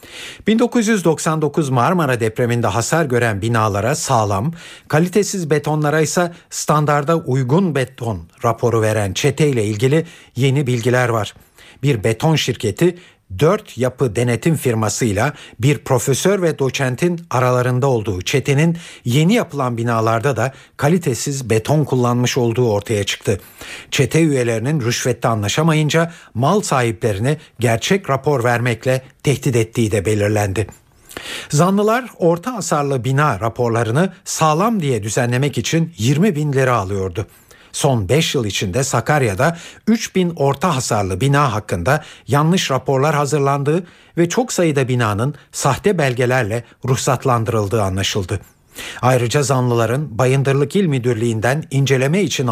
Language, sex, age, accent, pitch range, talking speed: Turkish, male, 60-79, native, 115-155 Hz, 110 wpm